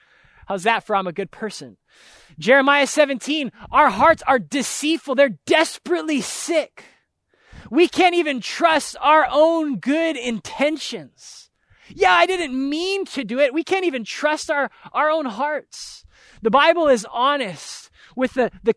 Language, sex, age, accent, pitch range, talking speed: English, male, 20-39, American, 195-275 Hz, 145 wpm